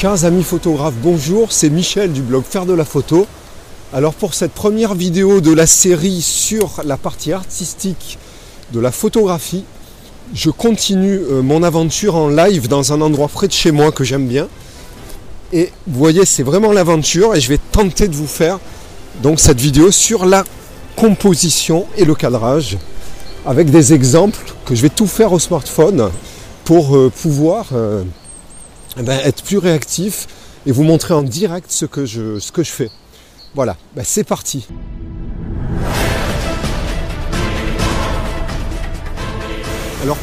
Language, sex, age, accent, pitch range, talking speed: French, male, 40-59, French, 130-180 Hz, 145 wpm